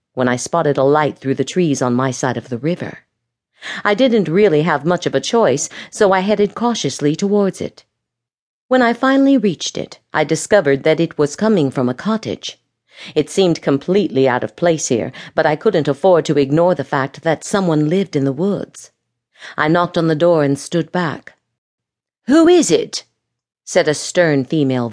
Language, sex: English, female